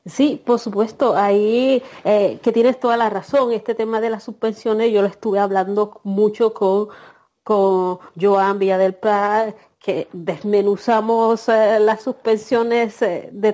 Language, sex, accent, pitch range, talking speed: Spanish, female, American, 210-265 Hz, 145 wpm